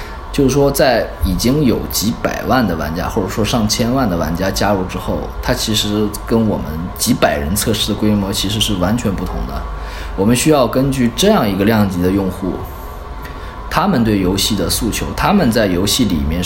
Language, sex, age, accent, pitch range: Chinese, male, 20-39, native, 90-120 Hz